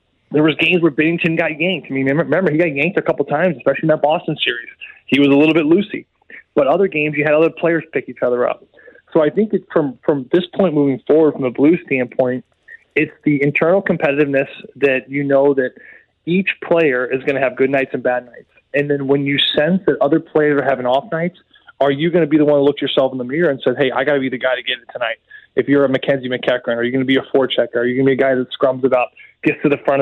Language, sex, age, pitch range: English, male, 20-39, 130-160 Hz